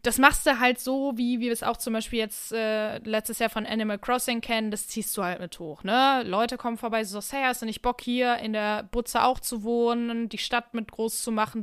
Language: German